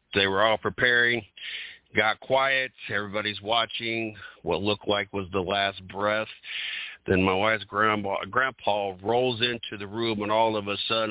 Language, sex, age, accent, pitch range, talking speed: English, male, 50-69, American, 100-120 Hz, 155 wpm